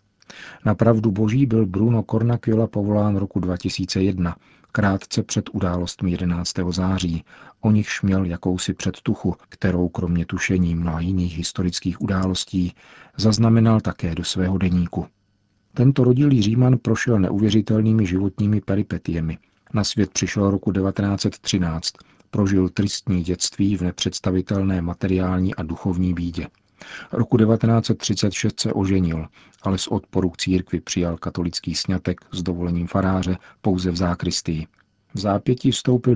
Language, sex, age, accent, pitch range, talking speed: Czech, male, 50-69, native, 90-105 Hz, 120 wpm